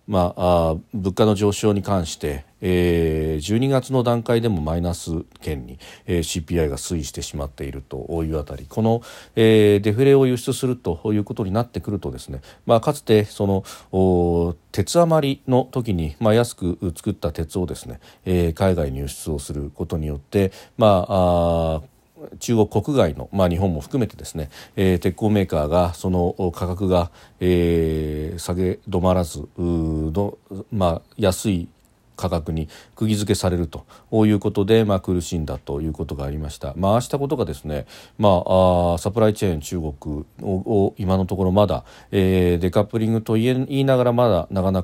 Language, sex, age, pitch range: Japanese, male, 40-59, 80-105 Hz